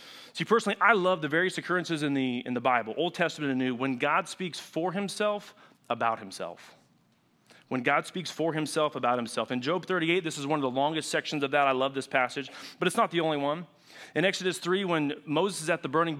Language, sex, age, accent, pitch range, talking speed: English, male, 30-49, American, 135-170 Hz, 220 wpm